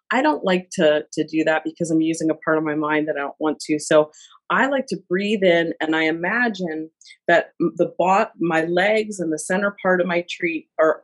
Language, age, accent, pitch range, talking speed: English, 40-59, American, 160-195 Hz, 230 wpm